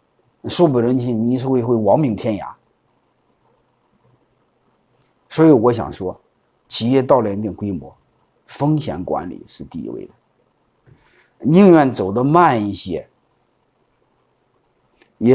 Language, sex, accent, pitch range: Chinese, male, native, 115-160 Hz